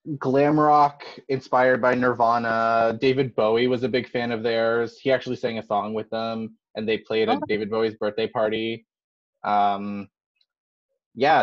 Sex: male